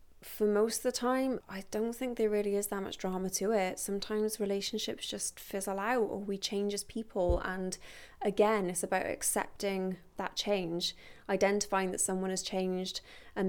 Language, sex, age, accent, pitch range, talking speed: English, female, 20-39, British, 185-215 Hz, 175 wpm